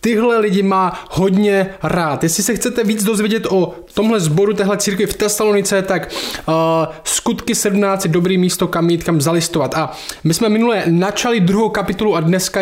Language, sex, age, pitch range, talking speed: Czech, male, 20-39, 165-205 Hz, 170 wpm